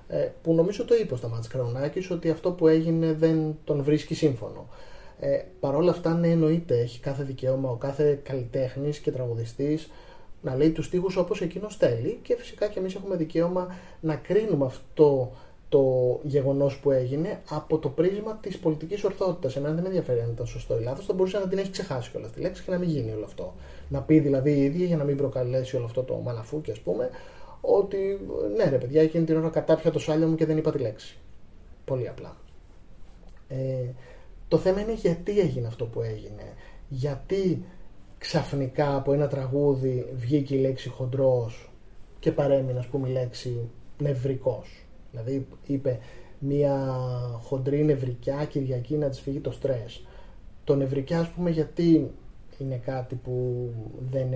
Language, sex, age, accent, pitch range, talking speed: Greek, male, 30-49, native, 130-165 Hz, 170 wpm